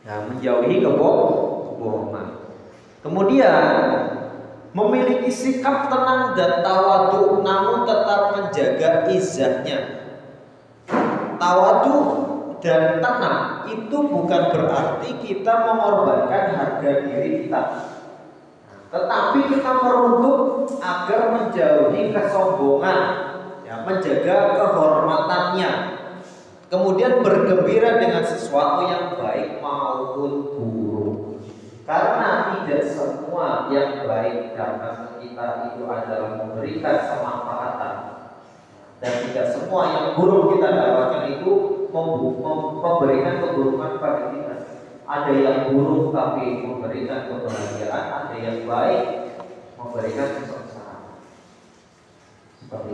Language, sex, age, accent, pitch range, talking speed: Indonesian, male, 30-49, native, 125-205 Hz, 90 wpm